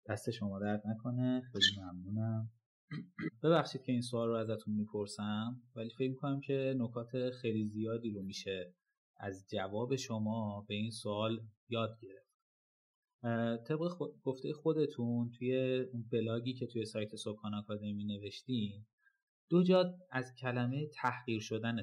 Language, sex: Persian, male